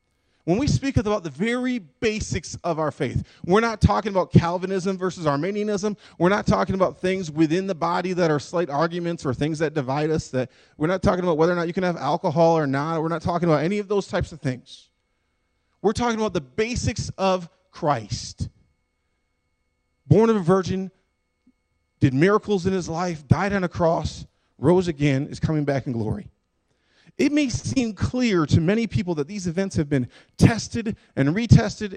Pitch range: 145-200 Hz